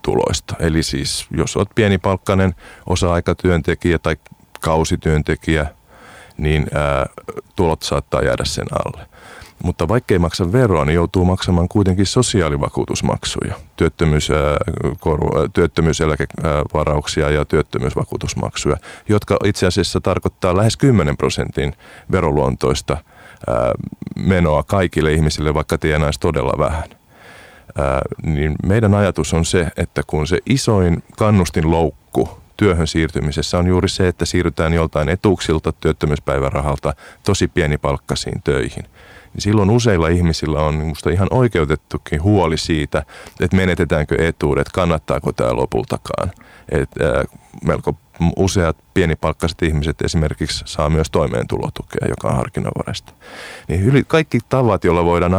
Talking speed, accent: 110 wpm, native